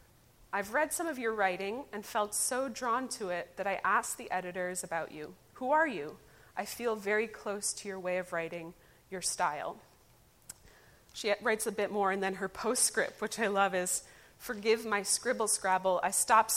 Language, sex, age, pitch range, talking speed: English, female, 20-39, 180-215 Hz, 185 wpm